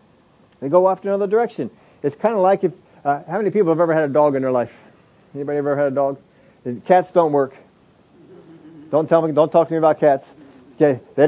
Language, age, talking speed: English, 40-59, 225 wpm